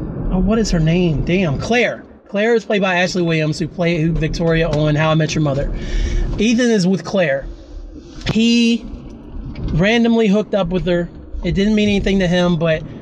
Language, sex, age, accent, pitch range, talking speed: English, male, 30-49, American, 160-190 Hz, 180 wpm